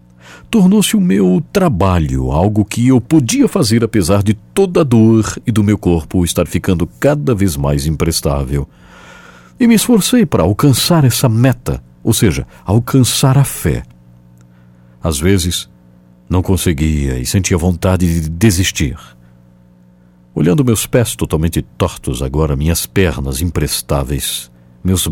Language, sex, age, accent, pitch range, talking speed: English, male, 60-79, Brazilian, 70-115 Hz, 130 wpm